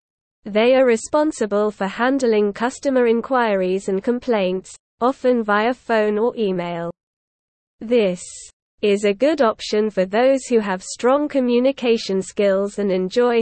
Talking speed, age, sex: 125 wpm, 20-39, female